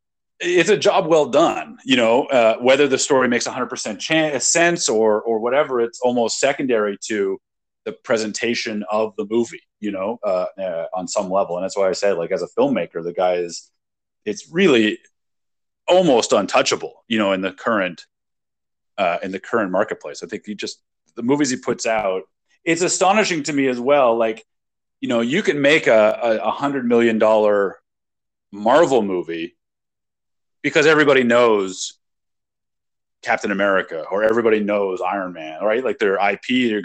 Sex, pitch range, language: male, 110-145 Hz, English